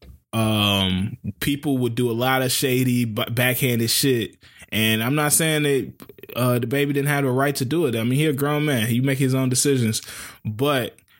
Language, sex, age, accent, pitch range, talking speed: English, male, 20-39, American, 105-135 Hz, 200 wpm